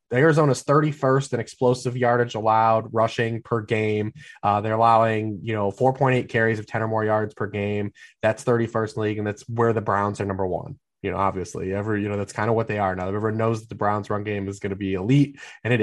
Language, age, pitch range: English, 20-39, 105-130 Hz